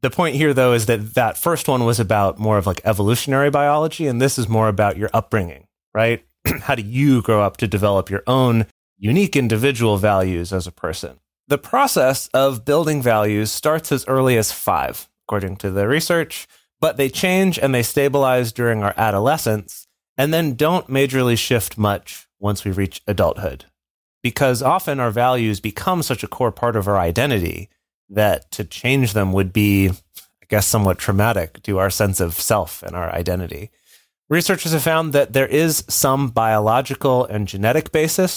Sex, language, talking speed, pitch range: male, English, 175 wpm, 105-135 Hz